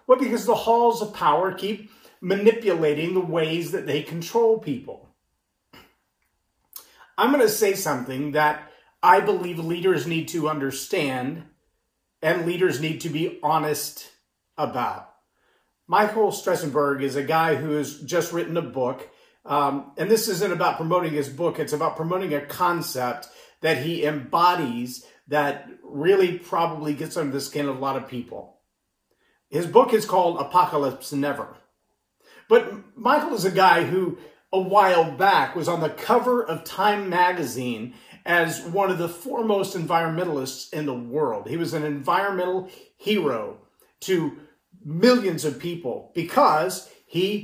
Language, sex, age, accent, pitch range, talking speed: English, male, 40-59, American, 150-200 Hz, 145 wpm